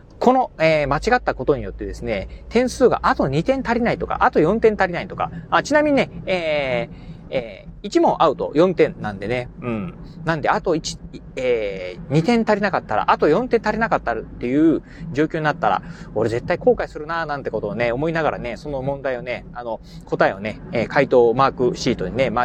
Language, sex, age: Japanese, male, 30-49